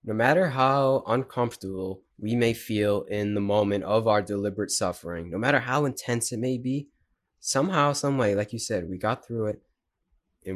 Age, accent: 20-39, American